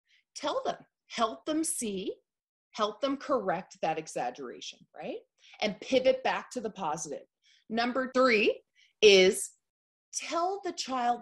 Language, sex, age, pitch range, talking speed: English, female, 30-49, 185-270 Hz, 125 wpm